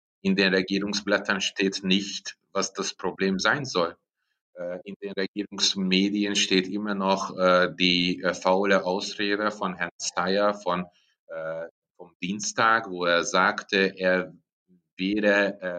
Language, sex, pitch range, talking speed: German, male, 90-100 Hz, 110 wpm